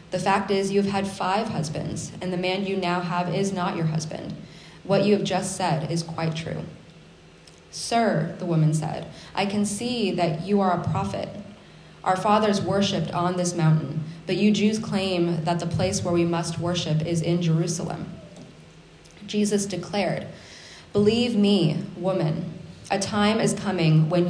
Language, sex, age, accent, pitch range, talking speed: English, female, 20-39, American, 160-190 Hz, 170 wpm